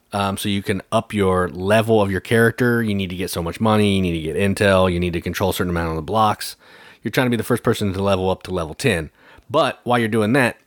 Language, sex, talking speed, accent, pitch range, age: English, male, 280 wpm, American, 90-115 Hz, 30-49